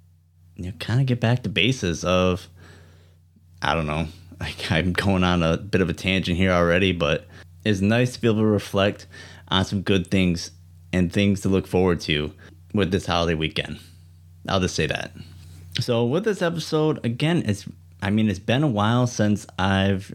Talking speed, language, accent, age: 185 wpm, English, American, 30-49